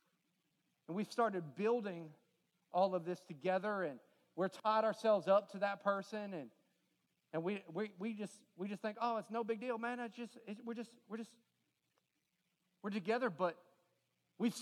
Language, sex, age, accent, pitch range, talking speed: English, male, 40-59, American, 180-235 Hz, 170 wpm